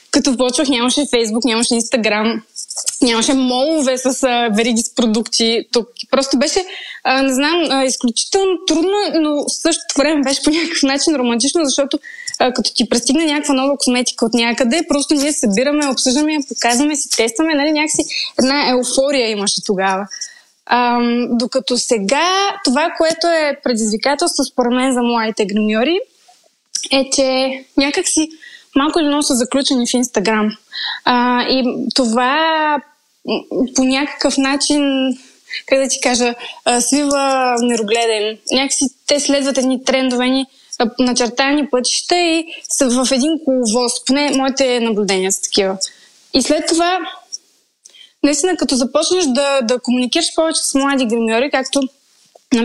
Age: 20-39